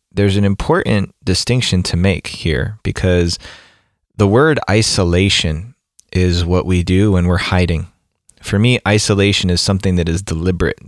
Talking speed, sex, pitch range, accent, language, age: 145 wpm, male, 90-100 Hz, American, English, 20-39